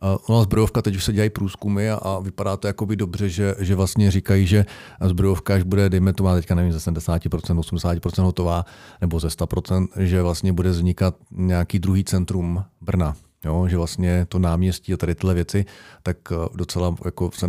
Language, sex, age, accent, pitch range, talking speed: Czech, male, 40-59, native, 85-95 Hz, 185 wpm